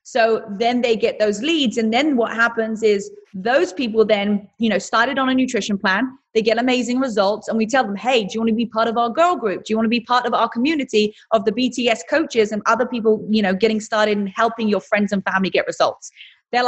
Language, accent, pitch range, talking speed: English, British, 210-255 Hz, 250 wpm